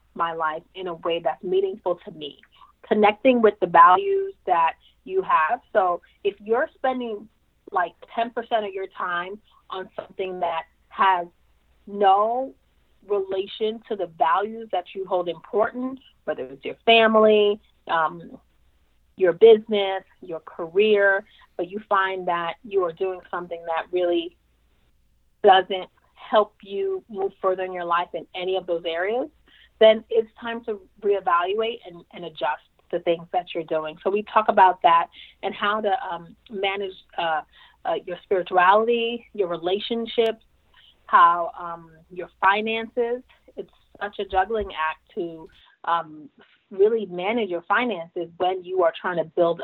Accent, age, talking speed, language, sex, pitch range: American, 30-49, 145 wpm, English, female, 175-220 Hz